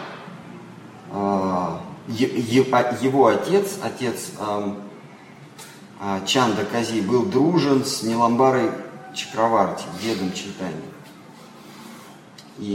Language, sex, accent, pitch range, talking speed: Russian, male, native, 100-140 Hz, 55 wpm